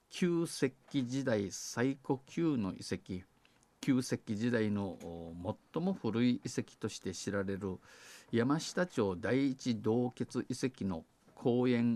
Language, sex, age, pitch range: Japanese, male, 50-69, 100-125 Hz